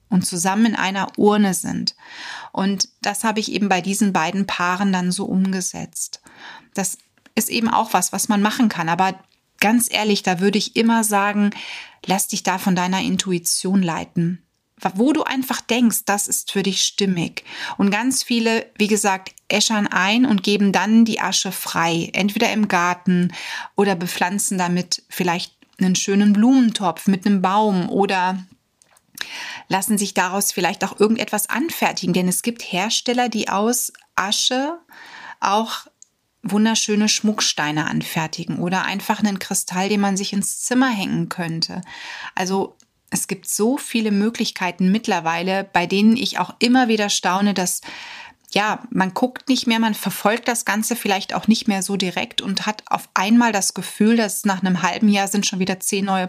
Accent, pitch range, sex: German, 185-225 Hz, female